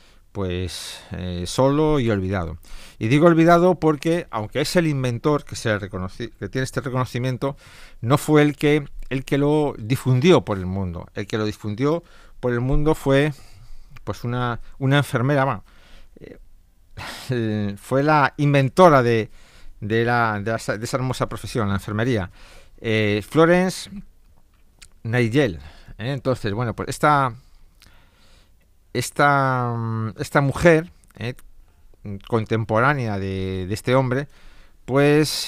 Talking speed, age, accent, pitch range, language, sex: 130 wpm, 50-69, Spanish, 100-135 Hz, Spanish, male